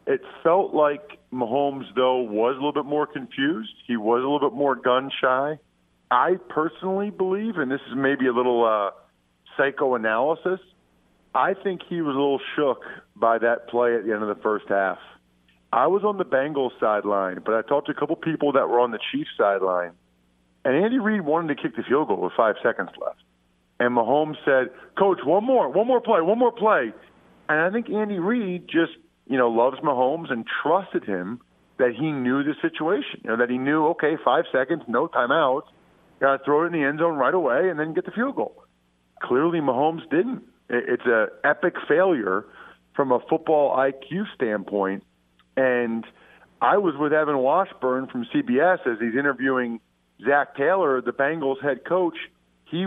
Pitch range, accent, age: 120-175 Hz, American, 50-69